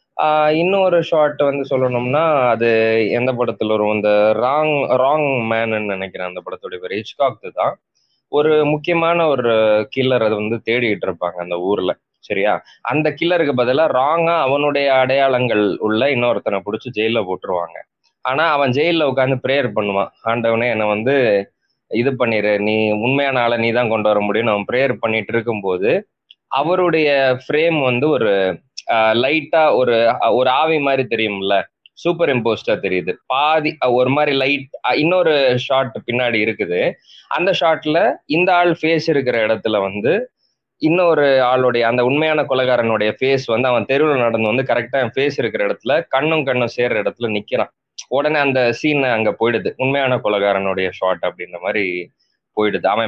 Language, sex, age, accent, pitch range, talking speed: Tamil, male, 20-39, native, 110-150 Hz, 130 wpm